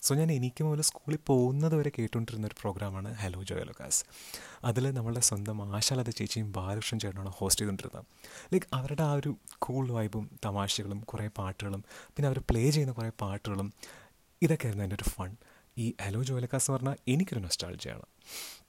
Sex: male